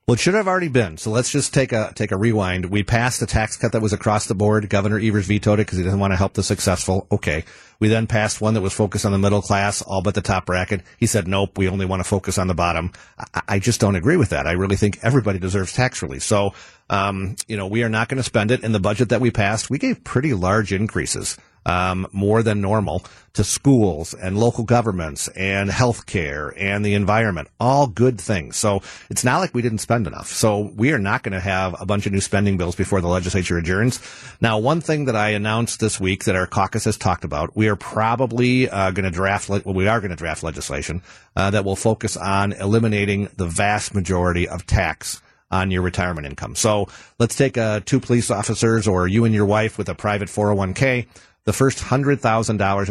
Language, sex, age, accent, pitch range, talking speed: English, male, 50-69, American, 95-115 Hz, 235 wpm